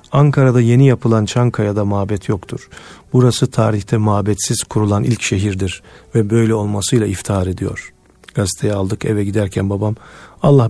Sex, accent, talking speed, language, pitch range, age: male, native, 130 wpm, Turkish, 100-125 Hz, 40-59